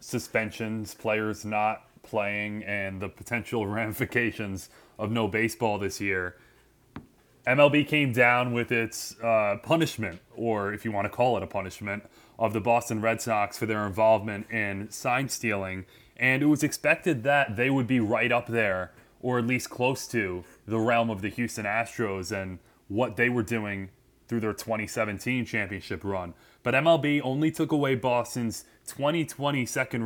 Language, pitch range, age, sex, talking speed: English, 105-130 Hz, 20-39, male, 160 wpm